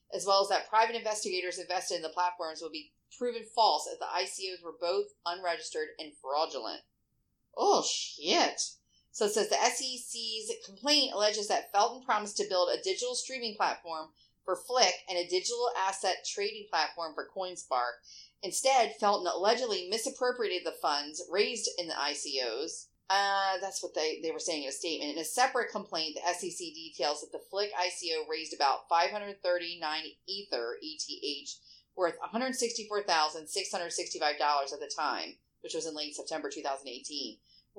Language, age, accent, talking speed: English, 30-49, American, 155 wpm